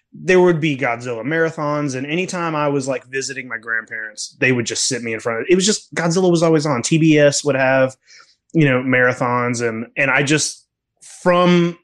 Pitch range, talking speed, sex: 125-165 Hz, 205 wpm, male